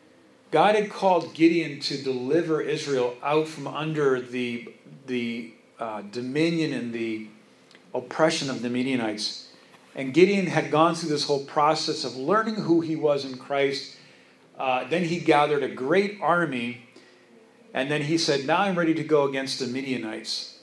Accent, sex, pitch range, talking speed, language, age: American, male, 130-170 Hz, 155 wpm, English, 40-59